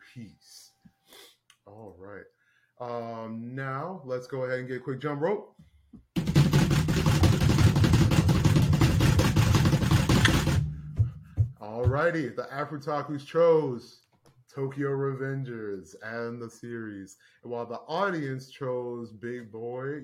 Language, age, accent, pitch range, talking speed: English, 30-49, American, 125-175 Hz, 90 wpm